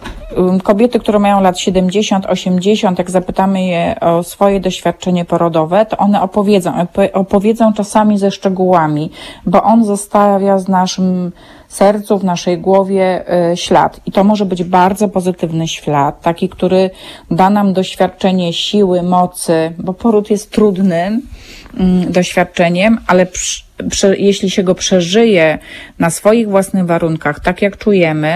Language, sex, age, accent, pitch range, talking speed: Polish, female, 30-49, native, 170-200 Hz, 130 wpm